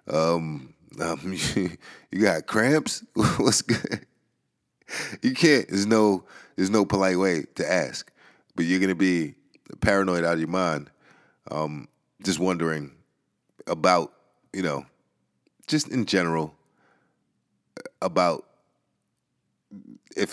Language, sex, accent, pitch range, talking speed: English, male, American, 80-110 Hz, 115 wpm